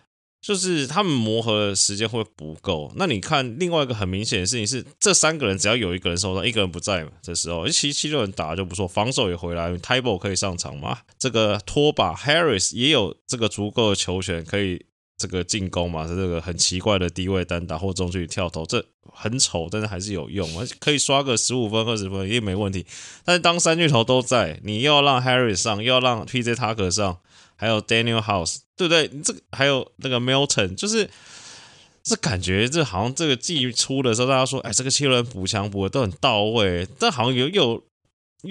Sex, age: male, 20-39